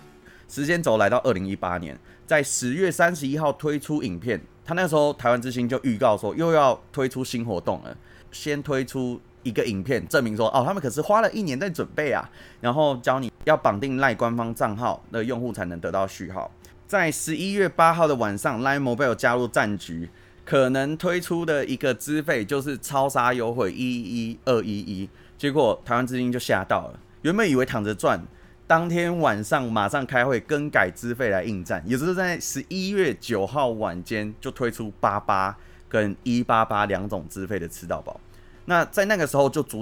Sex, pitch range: male, 105-145 Hz